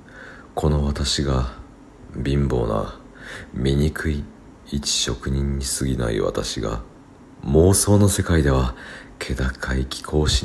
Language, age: Japanese, 40-59